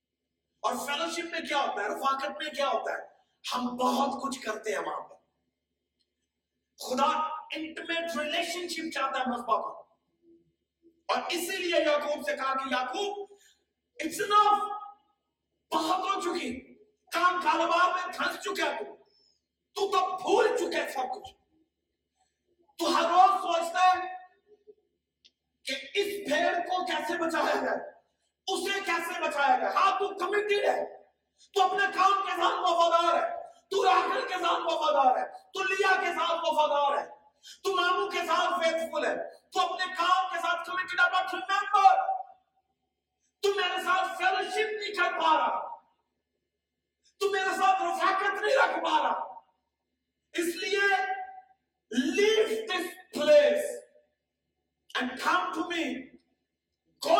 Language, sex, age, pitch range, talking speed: Urdu, male, 40-59, 310-385 Hz, 75 wpm